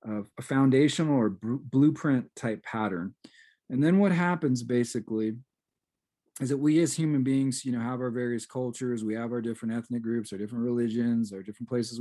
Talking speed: 180 wpm